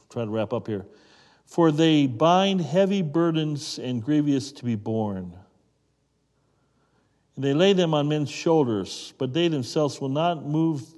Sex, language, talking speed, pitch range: male, English, 150 wpm, 120-150 Hz